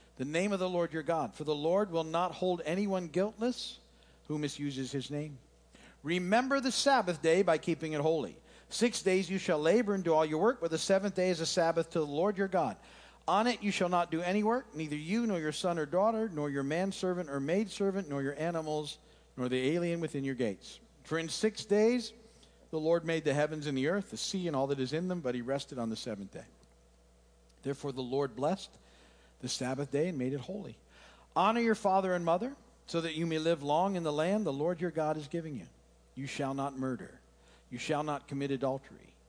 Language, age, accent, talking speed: English, 50-69, American, 225 wpm